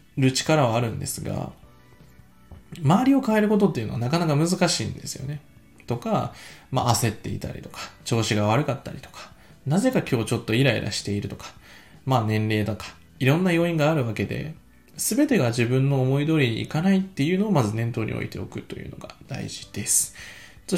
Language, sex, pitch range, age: Japanese, male, 115-165 Hz, 20-39